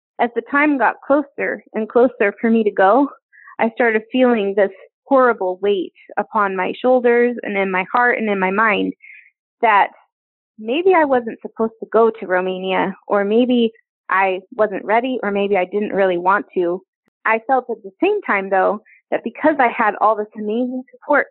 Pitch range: 205-255 Hz